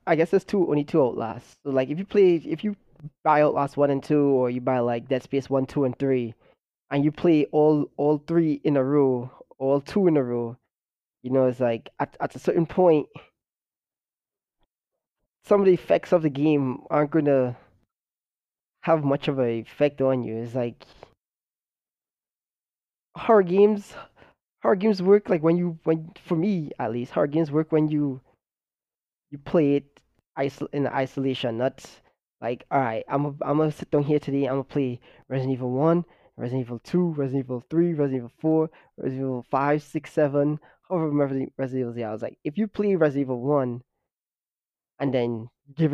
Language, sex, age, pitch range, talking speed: English, male, 20-39, 130-155 Hz, 185 wpm